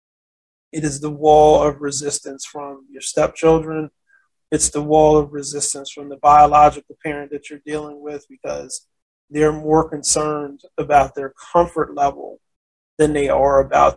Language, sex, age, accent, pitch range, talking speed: English, male, 20-39, American, 140-155 Hz, 145 wpm